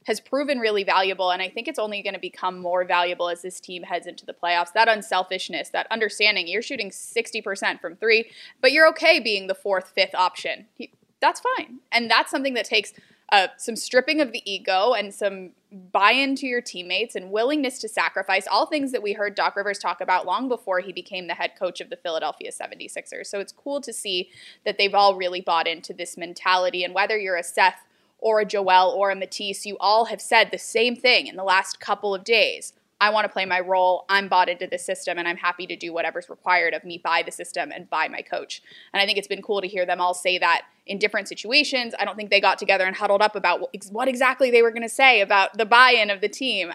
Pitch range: 180-225 Hz